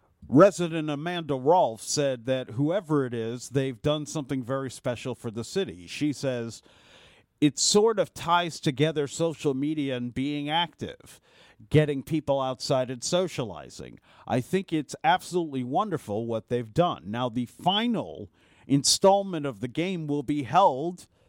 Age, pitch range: 50-69, 130-170 Hz